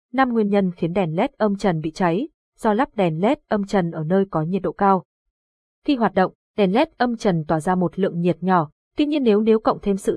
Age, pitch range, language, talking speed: 20-39, 180-230 Hz, Vietnamese, 250 wpm